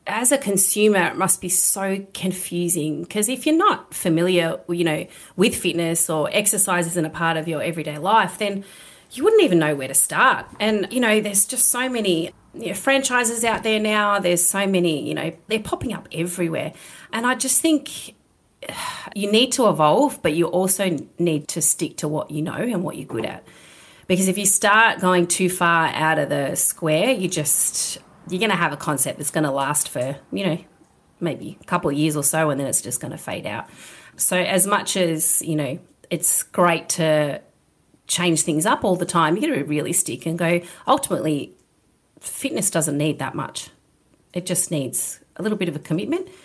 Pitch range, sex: 160-200 Hz, female